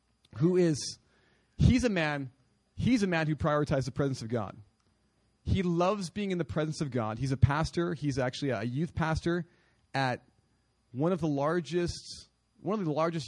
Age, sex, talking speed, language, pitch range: 30-49, male, 175 wpm, English, 115-165 Hz